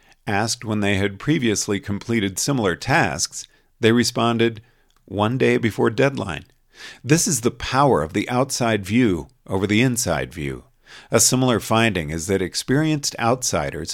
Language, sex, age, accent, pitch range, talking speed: English, male, 50-69, American, 100-130 Hz, 140 wpm